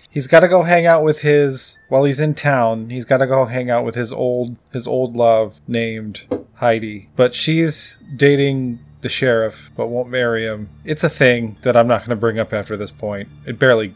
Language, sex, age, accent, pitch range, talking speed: English, male, 20-39, American, 115-155 Hz, 215 wpm